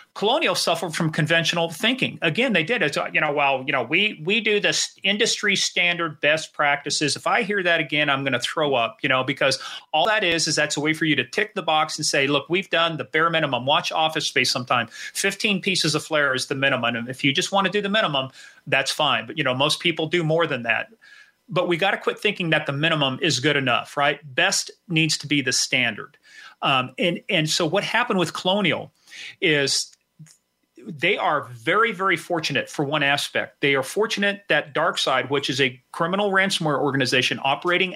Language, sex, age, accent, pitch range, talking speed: English, male, 40-59, American, 145-180 Hz, 215 wpm